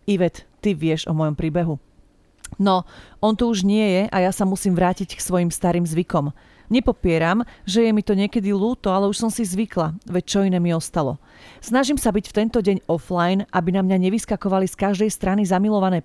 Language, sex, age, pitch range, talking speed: Slovak, female, 40-59, 175-210 Hz, 200 wpm